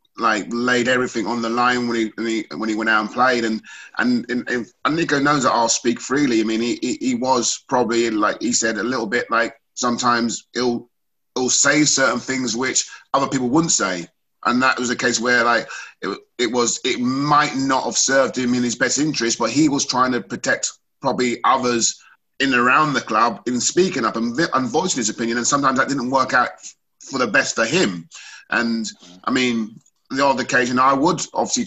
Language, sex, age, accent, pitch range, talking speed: English, male, 30-49, British, 115-140 Hz, 215 wpm